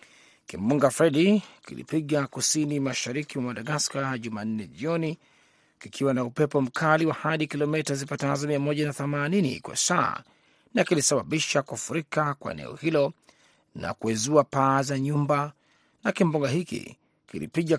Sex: male